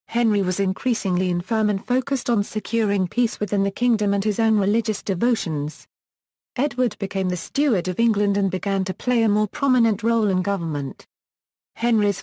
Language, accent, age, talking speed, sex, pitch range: English, British, 40-59, 165 wpm, female, 190-225 Hz